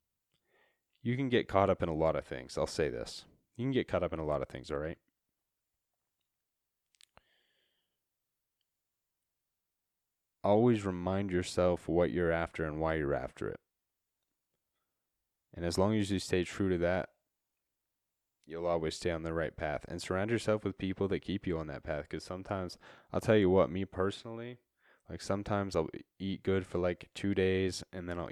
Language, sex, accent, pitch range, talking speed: English, male, American, 85-100 Hz, 175 wpm